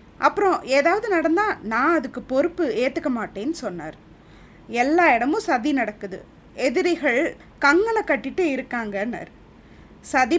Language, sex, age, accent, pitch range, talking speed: Tamil, female, 20-39, native, 225-320 Hz, 105 wpm